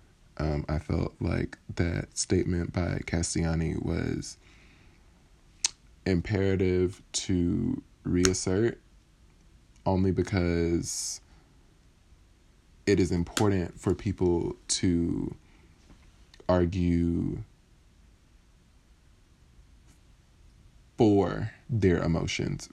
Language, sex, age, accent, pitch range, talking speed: English, male, 20-39, American, 80-95 Hz, 65 wpm